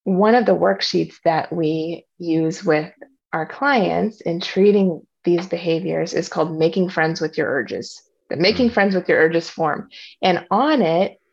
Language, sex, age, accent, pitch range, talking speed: English, female, 20-39, American, 165-195 Hz, 165 wpm